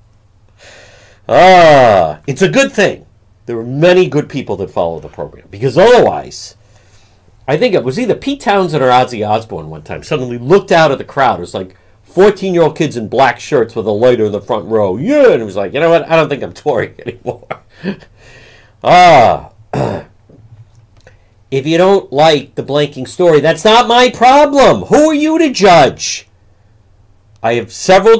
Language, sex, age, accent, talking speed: English, male, 50-69, American, 185 wpm